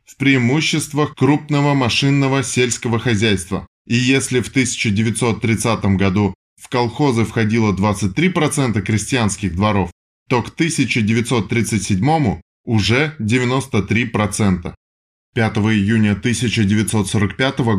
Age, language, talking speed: 20-39, Russian, 80 wpm